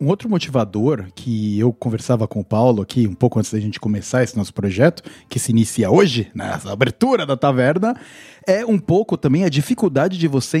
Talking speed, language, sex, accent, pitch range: 200 wpm, Portuguese, male, Brazilian, 120-160 Hz